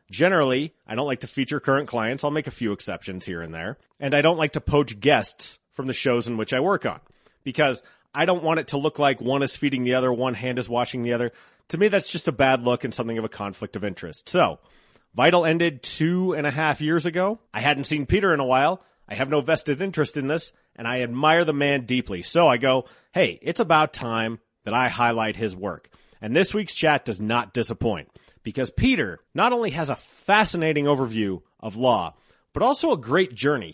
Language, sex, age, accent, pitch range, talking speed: English, male, 30-49, American, 120-165 Hz, 225 wpm